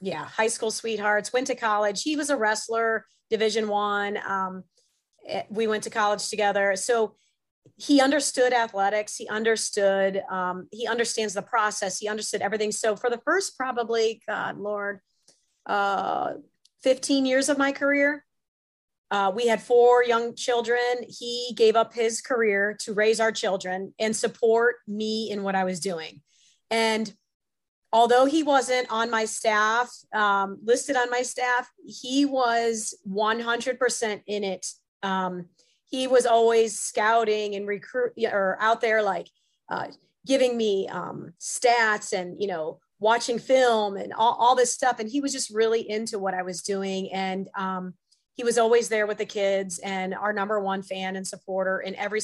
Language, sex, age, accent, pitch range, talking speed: English, female, 30-49, American, 200-240 Hz, 160 wpm